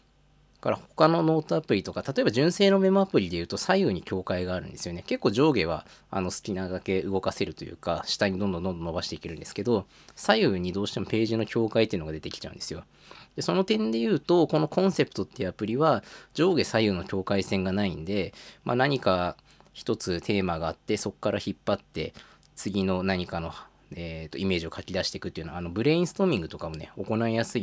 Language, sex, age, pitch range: Japanese, male, 20-39, 90-120 Hz